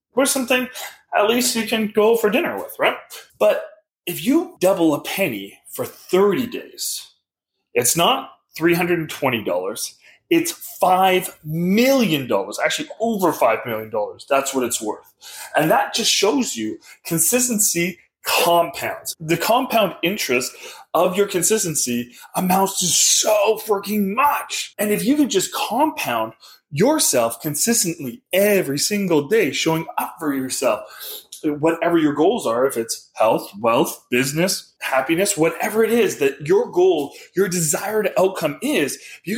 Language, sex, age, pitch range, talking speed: English, male, 30-49, 165-245 Hz, 135 wpm